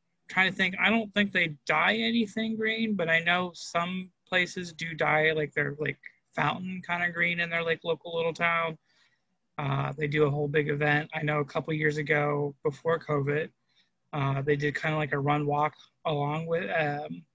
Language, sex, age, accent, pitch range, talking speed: English, male, 20-39, American, 145-165 Hz, 195 wpm